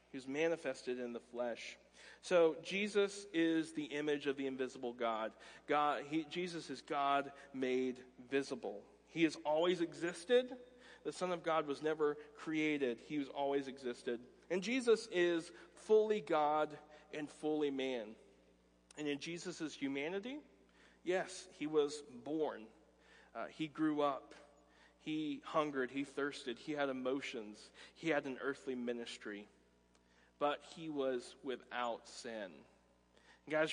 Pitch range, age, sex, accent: 125-160 Hz, 40-59, male, American